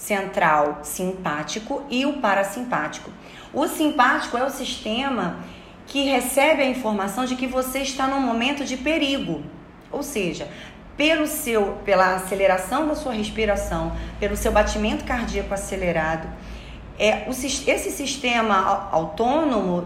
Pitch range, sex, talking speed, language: 195-275 Hz, female, 125 wpm, Vietnamese